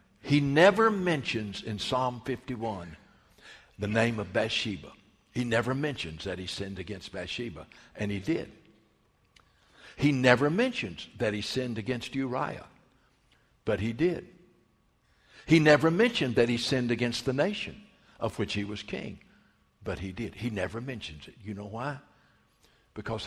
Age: 60-79